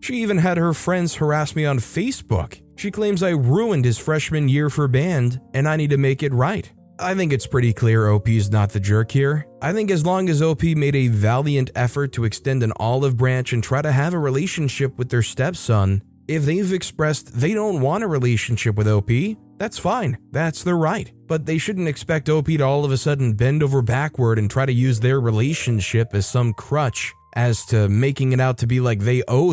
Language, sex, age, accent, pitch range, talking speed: English, male, 20-39, American, 115-155 Hz, 215 wpm